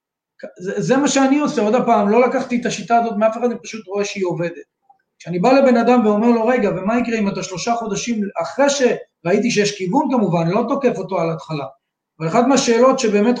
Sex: male